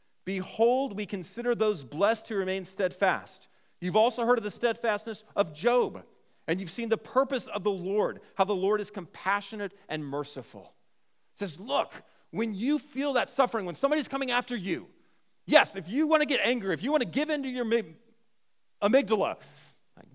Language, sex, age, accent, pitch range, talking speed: English, male, 40-59, American, 170-240 Hz, 180 wpm